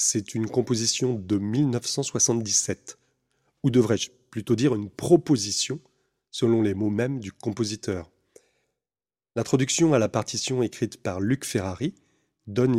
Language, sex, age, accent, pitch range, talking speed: French, male, 30-49, French, 105-135 Hz, 120 wpm